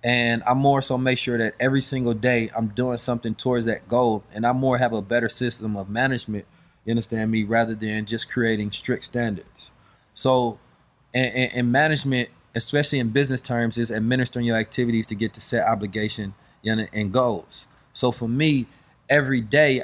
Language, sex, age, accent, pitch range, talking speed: English, male, 20-39, American, 115-130 Hz, 180 wpm